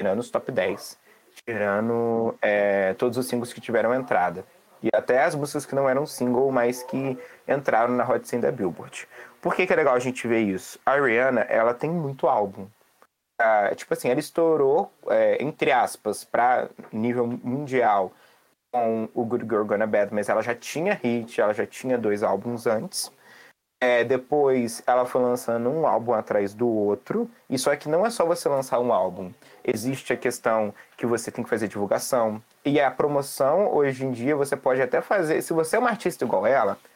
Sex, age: male, 20-39